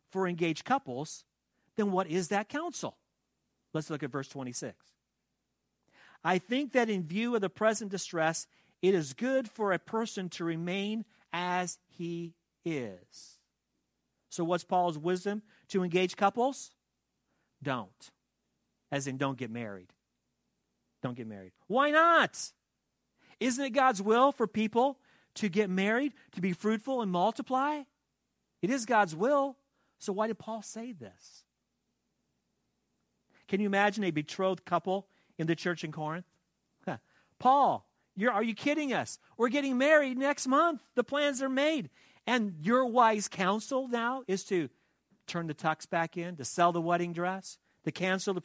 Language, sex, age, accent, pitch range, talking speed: English, male, 40-59, American, 170-240 Hz, 150 wpm